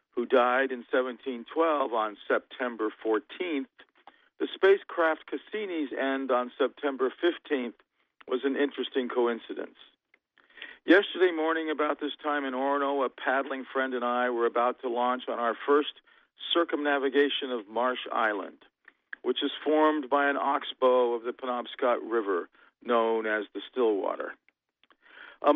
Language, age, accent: English, 50-69, American